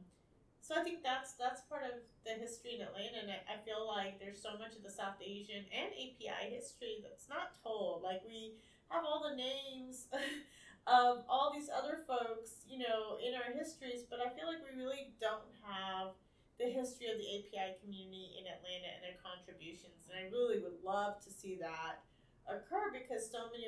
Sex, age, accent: female, 30-49, American